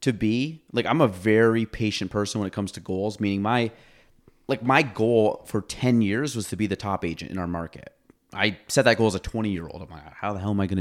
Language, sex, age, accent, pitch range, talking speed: English, male, 30-49, American, 95-115 Hz, 260 wpm